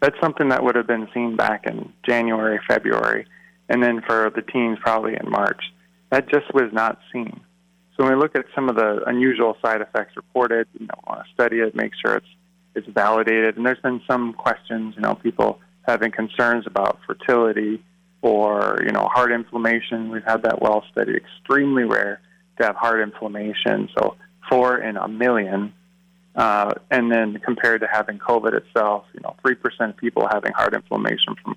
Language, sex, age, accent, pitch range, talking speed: English, male, 30-49, American, 110-130 Hz, 185 wpm